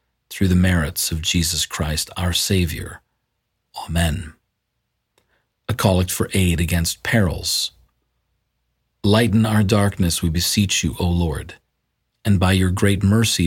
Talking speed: 125 wpm